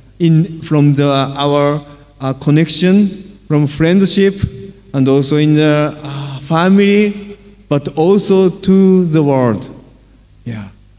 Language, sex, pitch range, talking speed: Indonesian, male, 130-180 Hz, 105 wpm